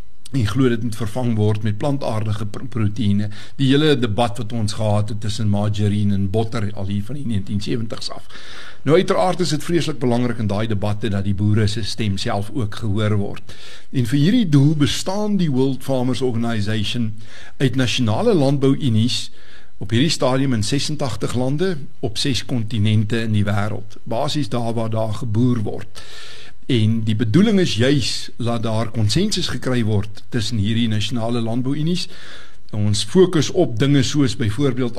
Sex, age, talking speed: male, 60-79, 155 wpm